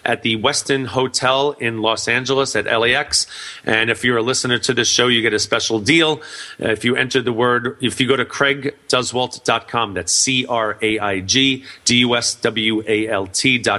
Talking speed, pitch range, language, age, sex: 150 wpm, 105-125 Hz, English, 30-49, male